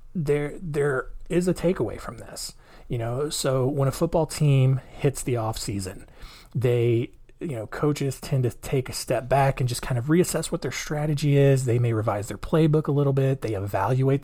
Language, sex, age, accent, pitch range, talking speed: English, male, 30-49, American, 115-135 Hz, 200 wpm